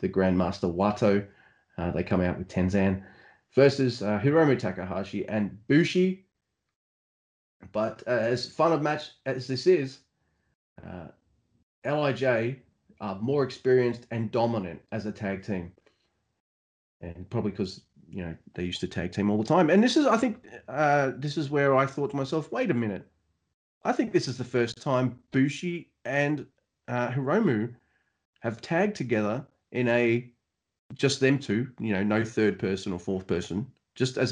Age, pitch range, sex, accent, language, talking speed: 30-49, 100-140 Hz, male, Australian, English, 165 wpm